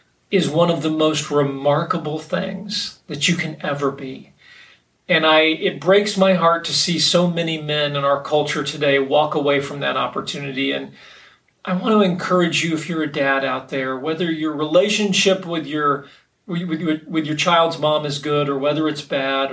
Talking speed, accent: 185 wpm, American